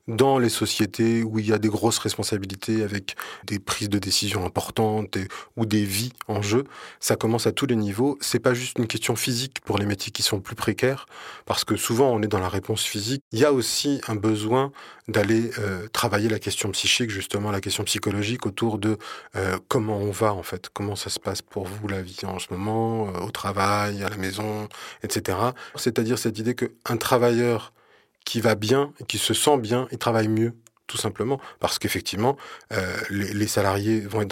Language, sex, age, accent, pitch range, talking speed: French, male, 20-39, French, 100-120 Hz, 205 wpm